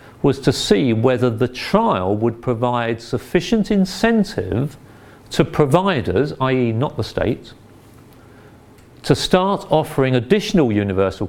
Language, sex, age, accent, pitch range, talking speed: English, male, 40-59, British, 110-145 Hz, 110 wpm